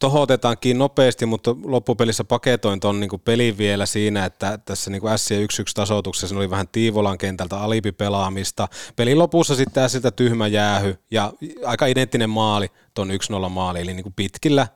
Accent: native